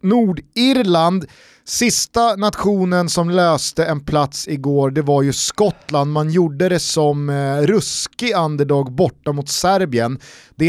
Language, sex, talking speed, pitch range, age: Swedish, male, 130 wpm, 130-165 Hz, 30-49